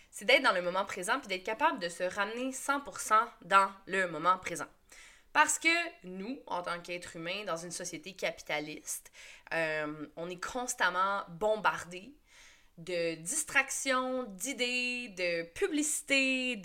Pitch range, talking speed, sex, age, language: 175-260 Hz, 135 wpm, female, 20-39, French